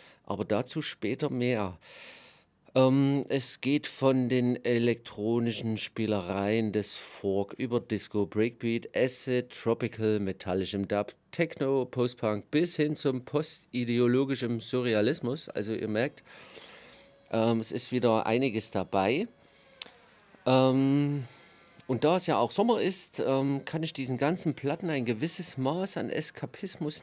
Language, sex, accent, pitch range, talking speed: German, male, German, 110-145 Hz, 120 wpm